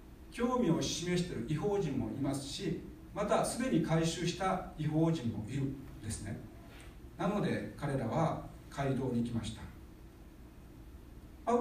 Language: Japanese